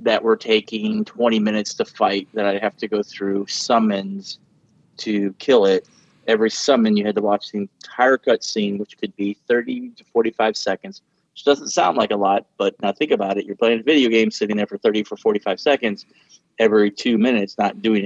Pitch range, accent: 100-120 Hz, American